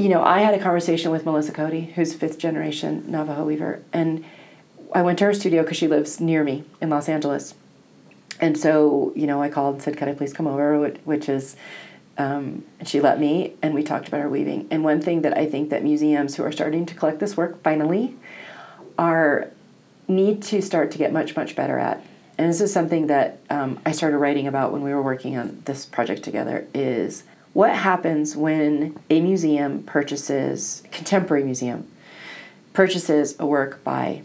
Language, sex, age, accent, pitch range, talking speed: English, female, 40-59, American, 145-170 Hz, 195 wpm